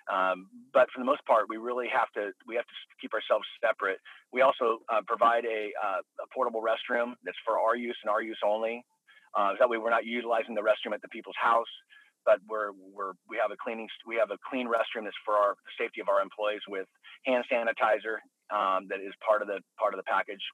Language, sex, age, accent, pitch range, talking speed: English, male, 40-59, American, 105-120 Hz, 230 wpm